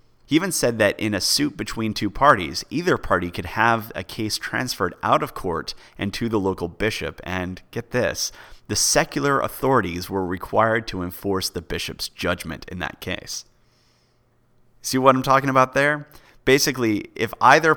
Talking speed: 170 wpm